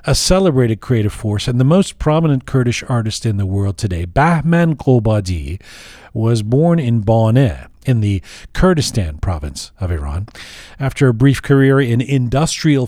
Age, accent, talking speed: 40-59, American, 150 wpm